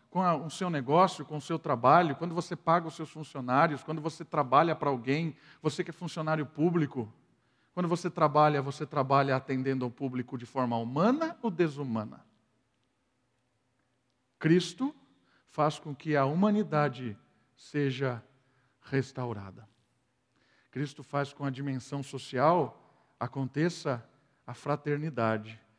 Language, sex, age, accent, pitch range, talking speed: Portuguese, male, 50-69, Brazilian, 130-155 Hz, 125 wpm